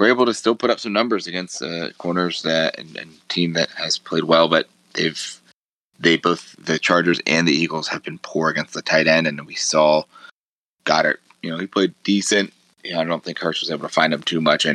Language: English